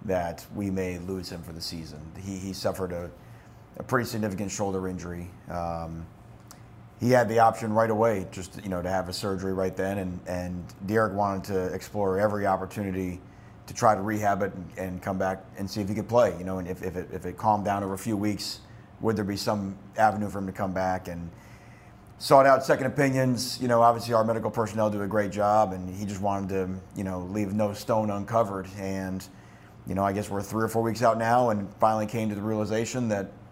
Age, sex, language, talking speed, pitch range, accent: 30-49, male, English, 225 wpm, 95-120 Hz, American